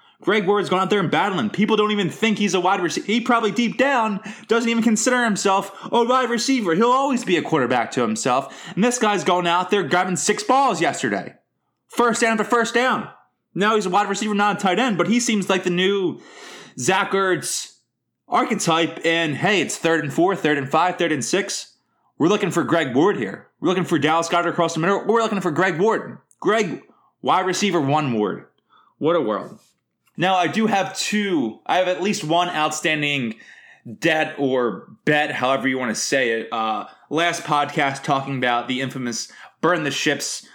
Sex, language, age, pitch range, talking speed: male, English, 20-39, 135-205 Hz, 200 wpm